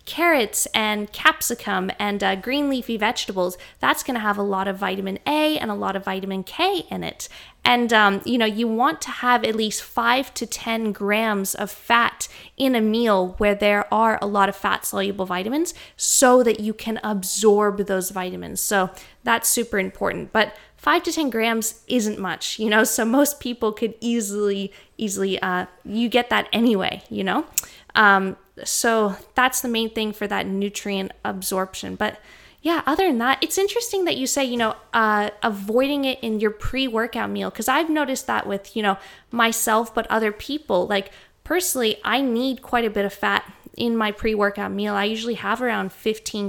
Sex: female